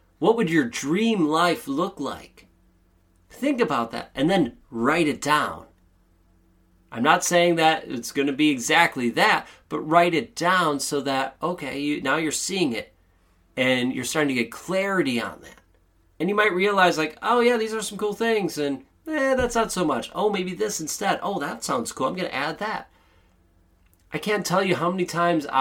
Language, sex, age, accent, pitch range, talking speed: English, male, 30-49, American, 105-175 Hz, 190 wpm